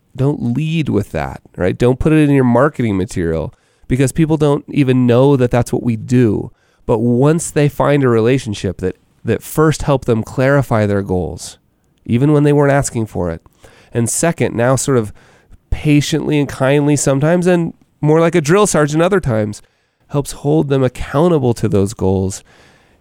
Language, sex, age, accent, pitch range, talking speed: English, male, 30-49, American, 95-140 Hz, 175 wpm